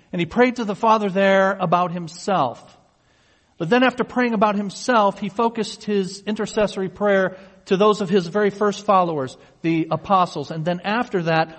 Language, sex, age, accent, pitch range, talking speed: English, male, 50-69, American, 140-210 Hz, 170 wpm